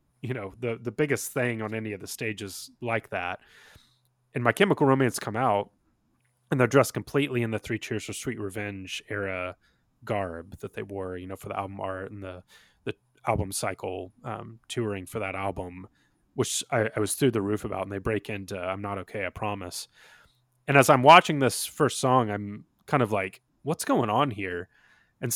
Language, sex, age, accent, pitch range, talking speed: English, male, 20-39, American, 105-130 Hz, 200 wpm